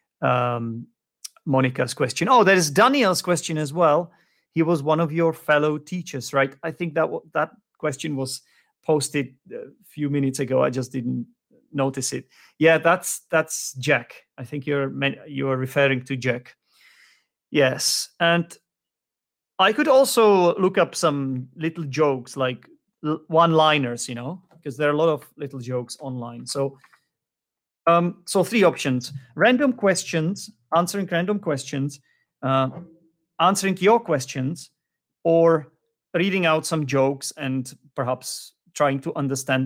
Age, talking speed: 30-49, 140 wpm